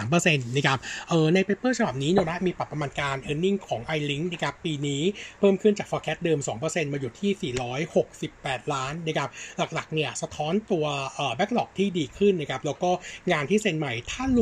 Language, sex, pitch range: Thai, male, 145-185 Hz